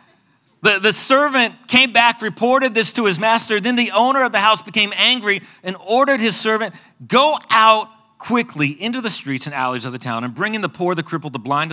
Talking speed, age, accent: 215 wpm, 40-59, American